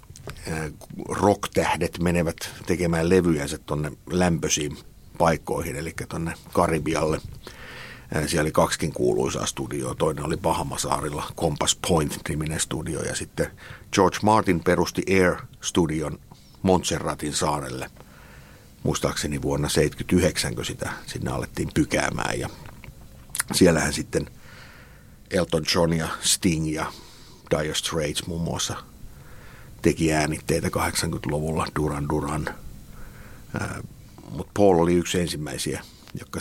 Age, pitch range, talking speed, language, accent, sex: 60-79, 75-100 Hz, 100 wpm, Finnish, native, male